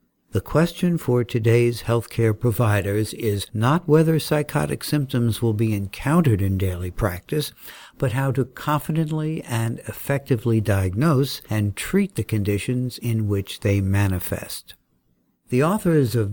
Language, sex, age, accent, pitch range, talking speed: English, male, 60-79, American, 105-140 Hz, 130 wpm